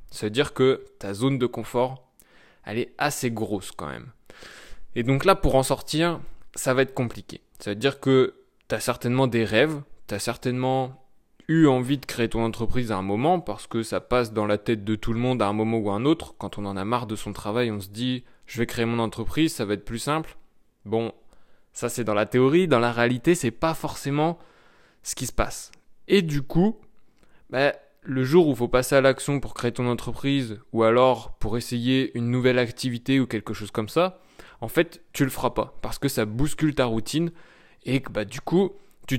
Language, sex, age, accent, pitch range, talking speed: French, male, 20-39, French, 115-145 Hz, 220 wpm